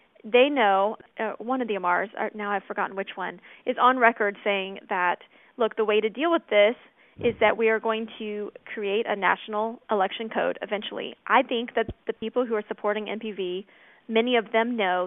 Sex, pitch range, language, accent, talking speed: female, 210-255 Hz, English, American, 195 wpm